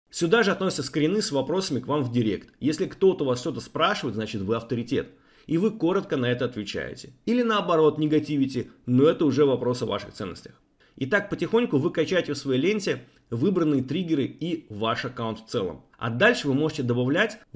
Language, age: Russian, 30-49